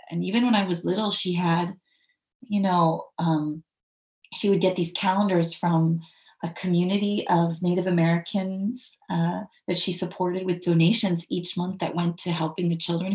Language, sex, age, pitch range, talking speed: English, female, 30-49, 165-195 Hz, 165 wpm